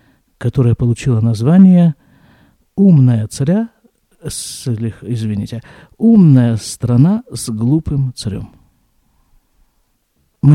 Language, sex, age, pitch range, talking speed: Russian, male, 50-69, 115-170 Hz, 65 wpm